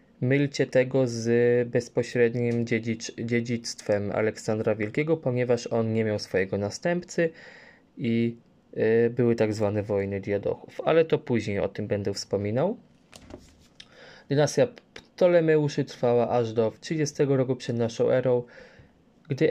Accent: native